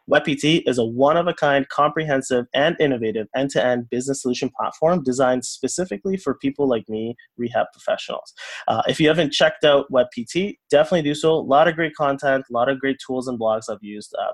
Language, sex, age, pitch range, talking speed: English, male, 20-39, 120-145 Hz, 190 wpm